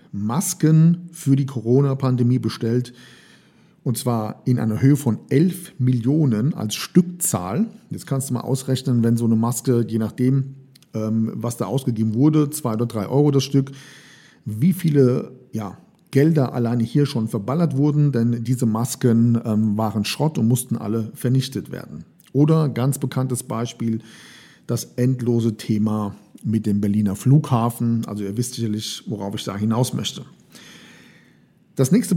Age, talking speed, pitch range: 50-69, 145 wpm, 115-145 Hz